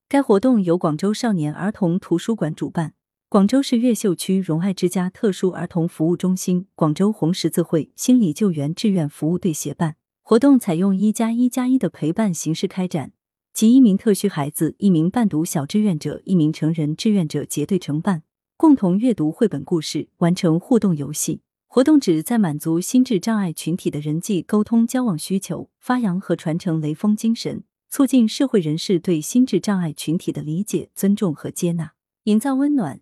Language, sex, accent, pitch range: Chinese, female, native, 160-220 Hz